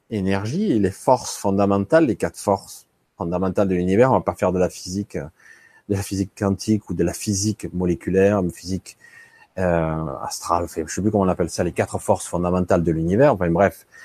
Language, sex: French, male